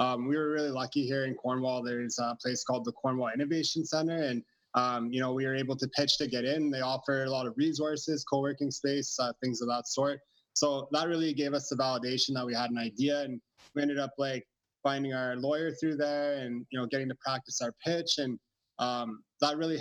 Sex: male